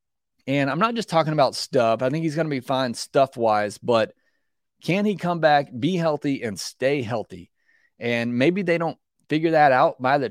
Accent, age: American, 30-49